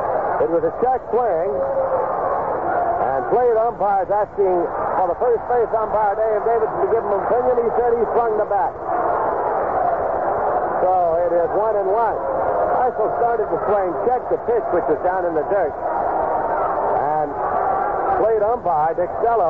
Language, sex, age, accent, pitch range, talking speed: English, male, 60-79, American, 185-225 Hz, 160 wpm